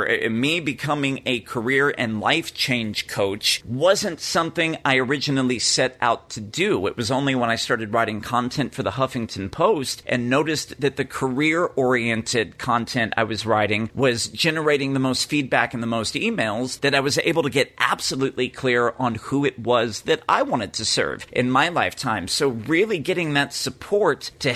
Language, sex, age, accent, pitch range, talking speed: English, male, 40-59, American, 120-150 Hz, 175 wpm